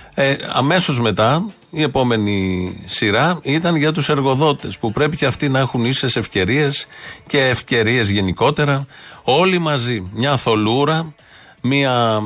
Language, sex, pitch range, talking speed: Greek, male, 105-140 Hz, 125 wpm